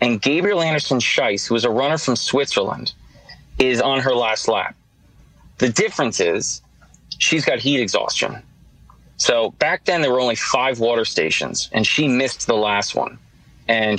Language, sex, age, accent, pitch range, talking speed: English, male, 30-49, American, 110-145 Hz, 165 wpm